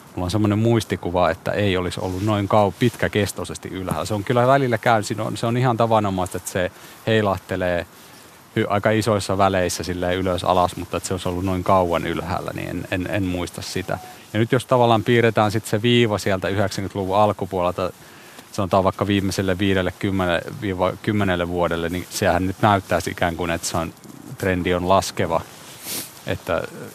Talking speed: 160 wpm